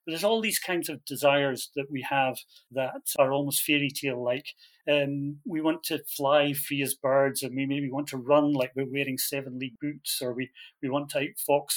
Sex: male